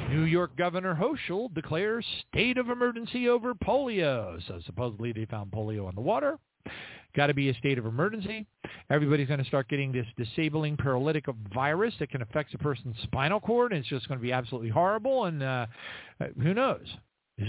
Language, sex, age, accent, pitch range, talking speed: English, male, 50-69, American, 120-190 Hz, 180 wpm